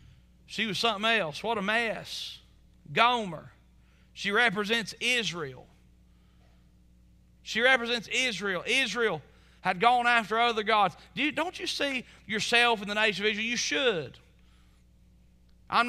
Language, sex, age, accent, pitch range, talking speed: English, male, 40-59, American, 165-225 Hz, 120 wpm